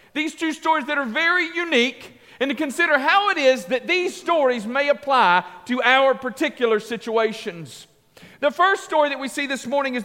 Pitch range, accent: 225-310 Hz, American